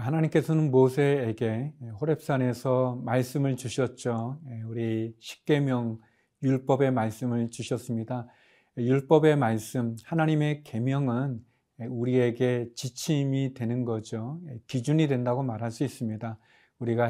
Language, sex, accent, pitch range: Korean, male, native, 120-145 Hz